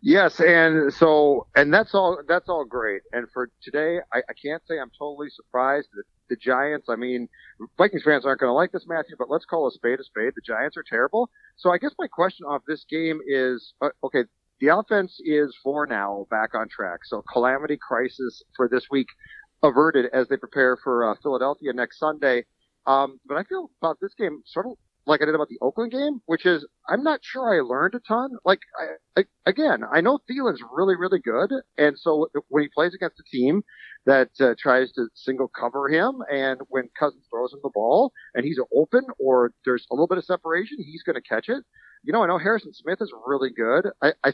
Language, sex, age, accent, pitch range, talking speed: English, male, 40-59, American, 130-190 Hz, 210 wpm